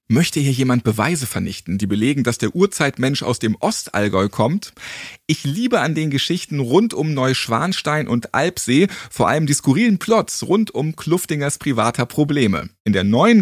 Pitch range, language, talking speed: 120-175 Hz, German, 165 wpm